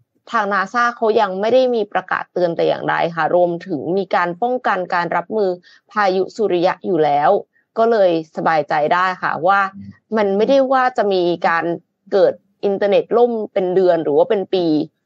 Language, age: Thai, 20-39